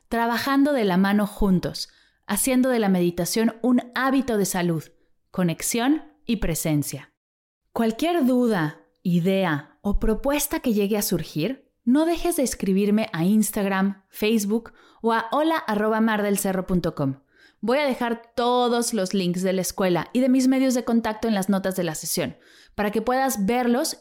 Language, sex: Spanish, female